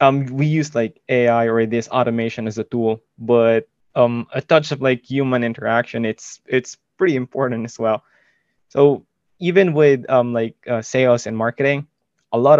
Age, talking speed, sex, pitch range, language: 20-39, 170 wpm, male, 115-135 Hz, English